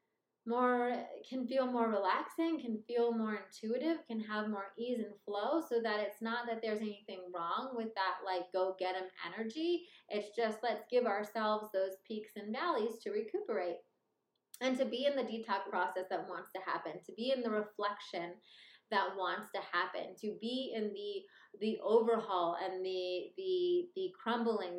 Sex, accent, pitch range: female, American, 190-235 Hz